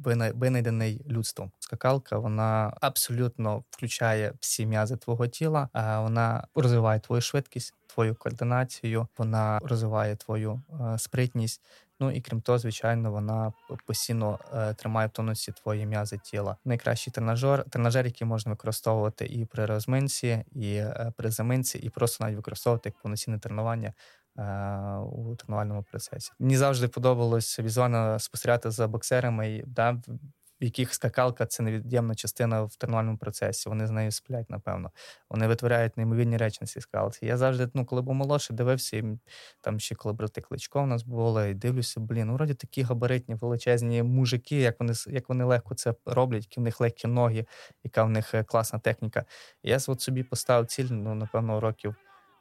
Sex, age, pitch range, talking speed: male, 20-39, 110-125 Hz, 155 wpm